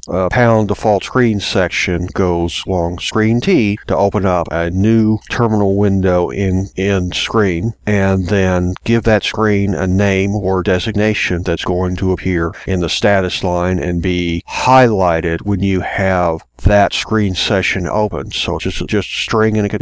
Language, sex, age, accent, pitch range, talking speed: English, male, 50-69, American, 90-110 Hz, 165 wpm